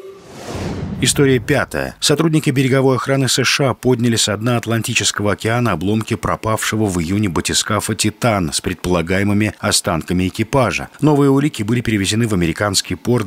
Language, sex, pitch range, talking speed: Russian, male, 90-125 Hz, 125 wpm